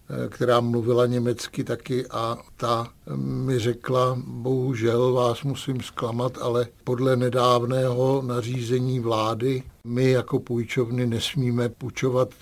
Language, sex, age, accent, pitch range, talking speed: Czech, male, 60-79, native, 115-130 Hz, 105 wpm